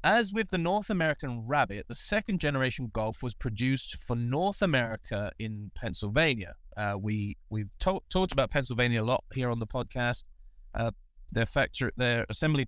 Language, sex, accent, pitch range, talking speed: English, male, British, 110-150 Hz, 160 wpm